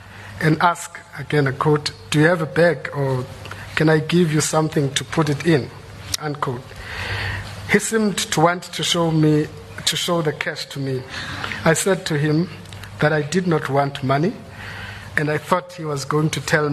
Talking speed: 185 wpm